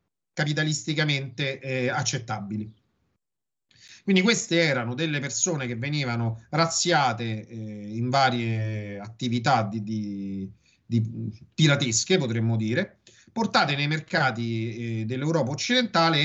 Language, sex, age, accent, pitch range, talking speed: Italian, male, 30-49, native, 120-165 Hz, 100 wpm